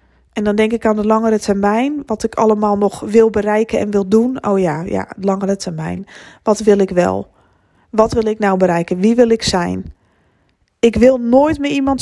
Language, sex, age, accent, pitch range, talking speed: Dutch, female, 20-39, Dutch, 195-230 Hz, 200 wpm